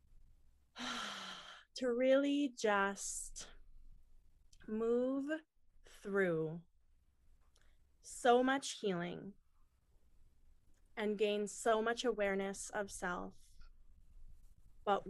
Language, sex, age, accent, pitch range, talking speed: English, female, 20-39, American, 180-230 Hz, 65 wpm